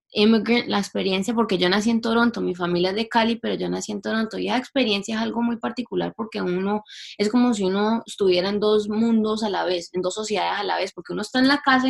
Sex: female